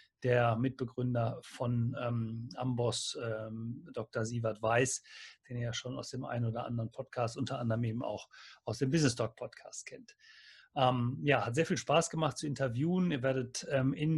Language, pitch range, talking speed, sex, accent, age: German, 120-135 Hz, 170 wpm, male, German, 40-59